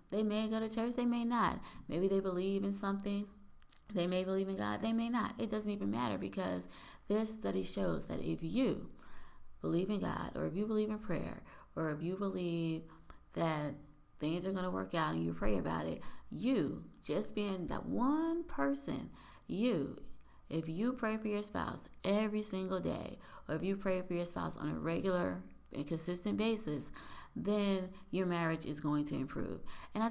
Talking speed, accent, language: 190 wpm, American, English